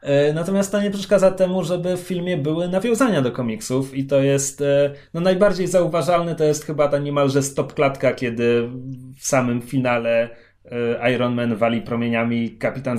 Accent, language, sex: native, Polish, male